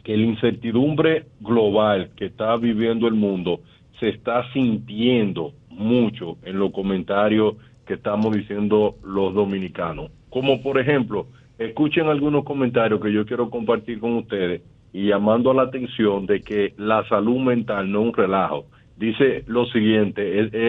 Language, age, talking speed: Spanish, 50-69, 140 wpm